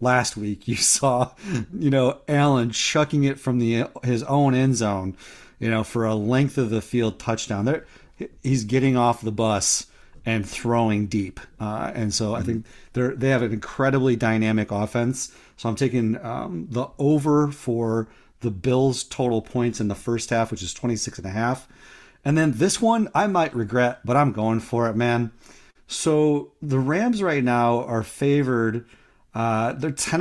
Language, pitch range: English, 115-140 Hz